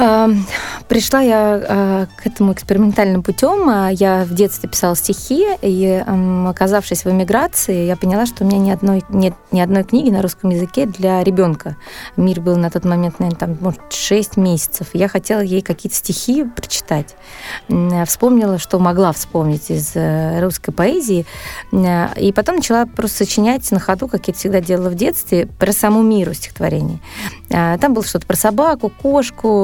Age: 20-39